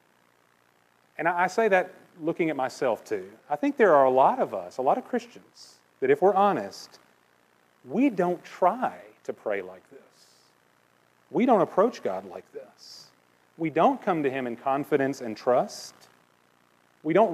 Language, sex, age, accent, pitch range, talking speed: English, male, 40-59, American, 130-180 Hz, 165 wpm